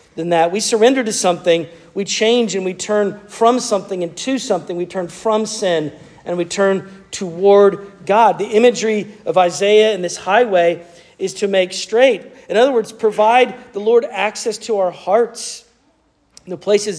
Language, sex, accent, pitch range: English, male, American, 185-240 Hz